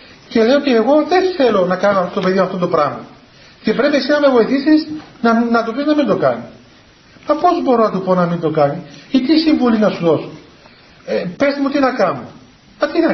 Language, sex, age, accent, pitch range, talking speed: Greek, male, 40-59, native, 190-275 Hz, 240 wpm